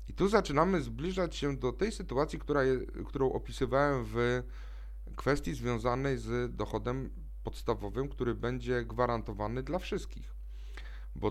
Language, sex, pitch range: Polish, male, 110-160 Hz